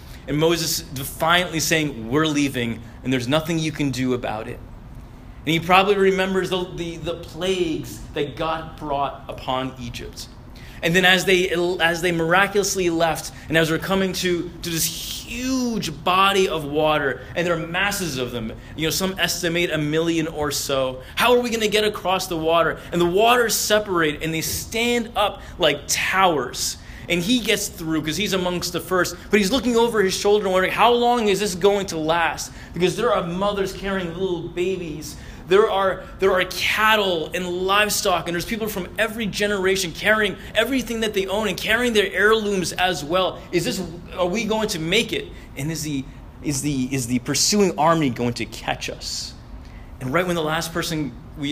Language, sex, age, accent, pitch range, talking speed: English, male, 30-49, American, 150-195 Hz, 190 wpm